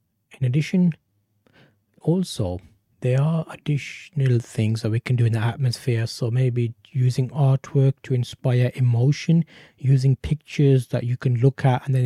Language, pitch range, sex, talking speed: English, 120-140 Hz, male, 150 wpm